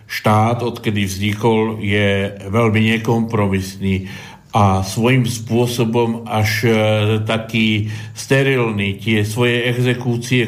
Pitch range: 110-125 Hz